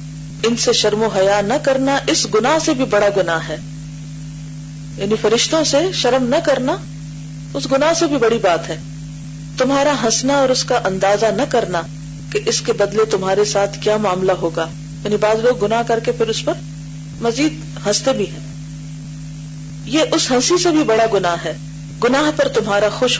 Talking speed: 180 wpm